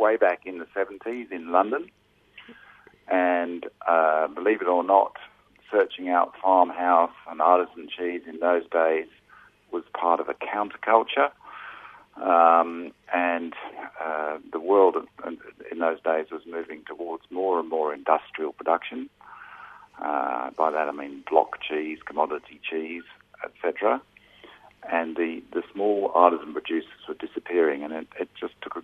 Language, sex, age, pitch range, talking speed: English, male, 50-69, 80-90 Hz, 140 wpm